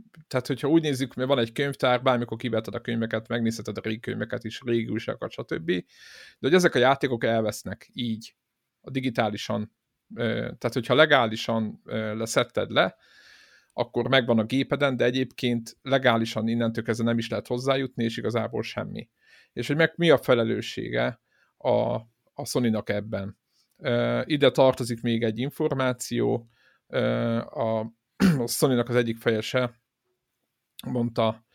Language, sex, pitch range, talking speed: Hungarian, male, 110-130 Hz, 140 wpm